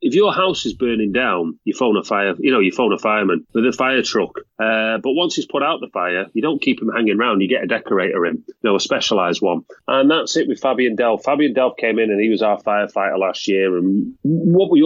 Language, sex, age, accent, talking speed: English, male, 30-49, British, 260 wpm